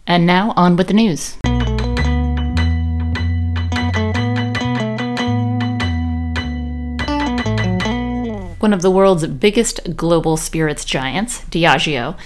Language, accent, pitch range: English, American, 140-185 Hz